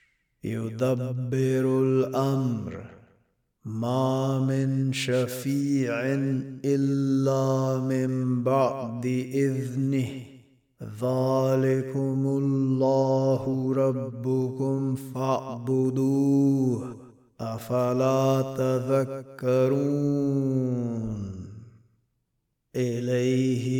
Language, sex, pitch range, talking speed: Arabic, male, 125-135 Hz, 40 wpm